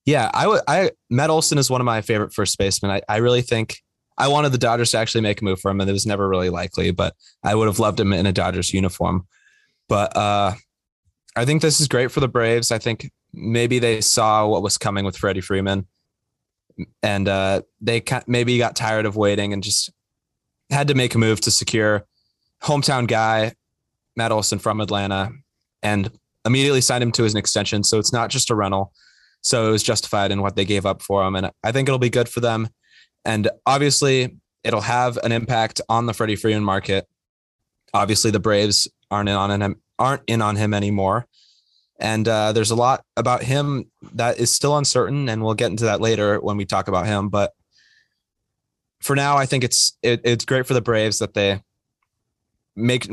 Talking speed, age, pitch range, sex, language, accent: 200 wpm, 20-39, 100-120 Hz, male, English, American